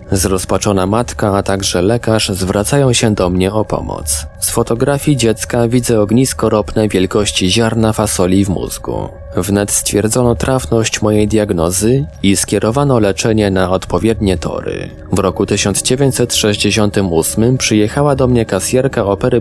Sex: male